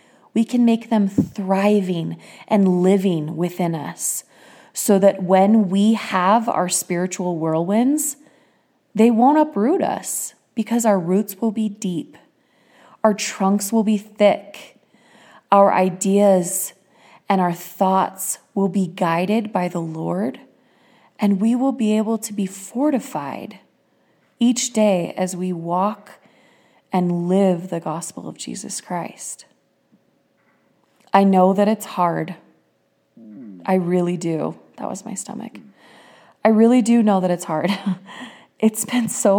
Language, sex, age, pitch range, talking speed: English, female, 20-39, 175-210 Hz, 130 wpm